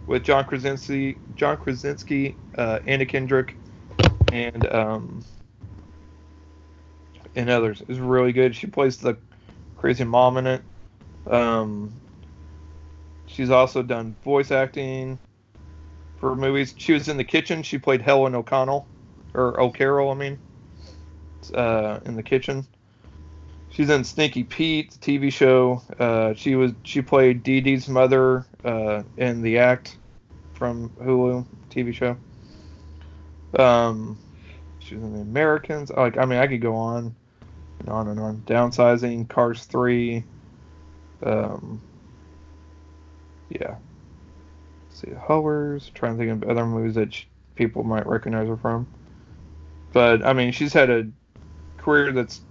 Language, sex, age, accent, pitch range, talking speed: English, male, 40-59, American, 90-130 Hz, 130 wpm